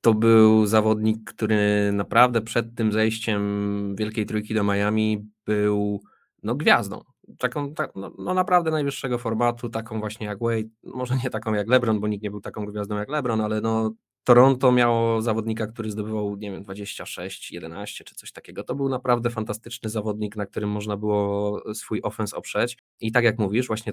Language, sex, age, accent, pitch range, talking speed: Polish, male, 20-39, native, 105-120 Hz, 175 wpm